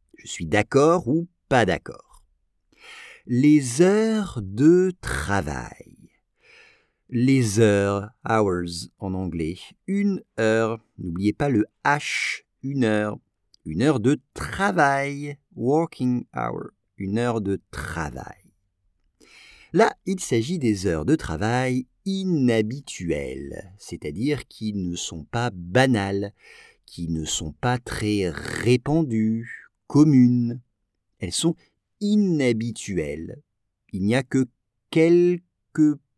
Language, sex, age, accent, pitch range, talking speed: English, male, 50-69, French, 100-145 Hz, 100 wpm